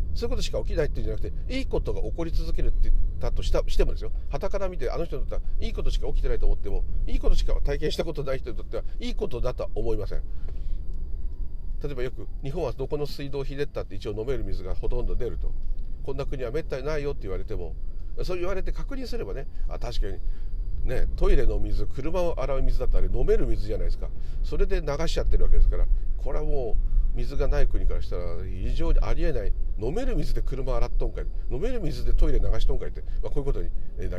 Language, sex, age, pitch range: Japanese, male, 40-59, 80-130 Hz